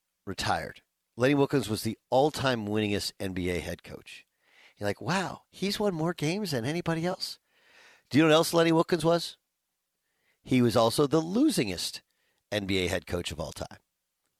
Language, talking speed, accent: English, 165 wpm, American